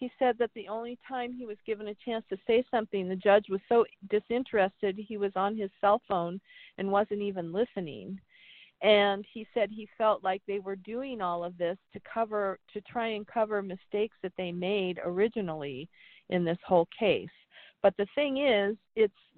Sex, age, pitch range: female, 50-69, 195-230 Hz